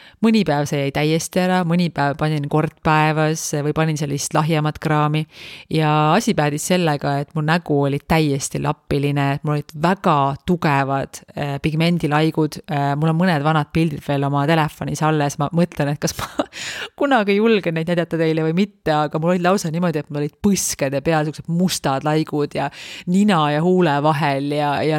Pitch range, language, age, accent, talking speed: 150-175 Hz, English, 30-49, Finnish, 165 wpm